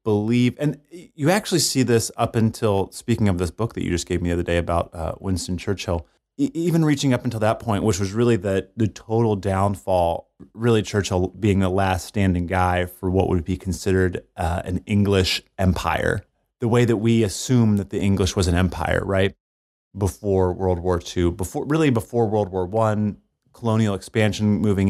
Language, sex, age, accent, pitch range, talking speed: English, male, 30-49, American, 90-115 Hz, 190 wpm